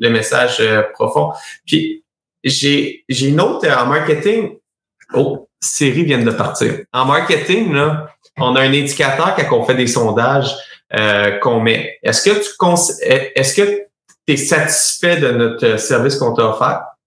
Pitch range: 125-180 Hz